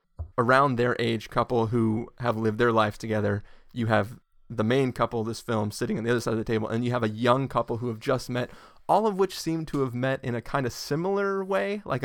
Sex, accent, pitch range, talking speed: male, American, 110-130 Hz, 250 wpm